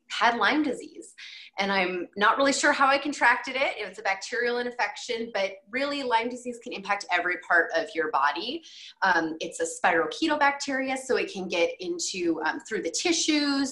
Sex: female